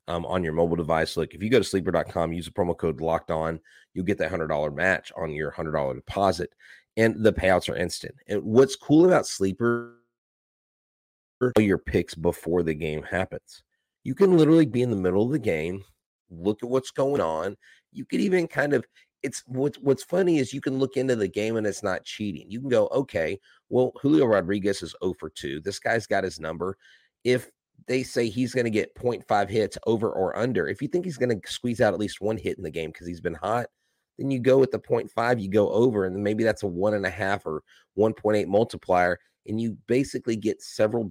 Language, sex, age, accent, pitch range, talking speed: English, male, 30-49, American, 95-120 Hz, 220 wpm